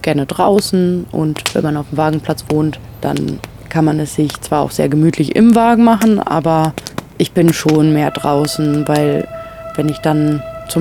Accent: German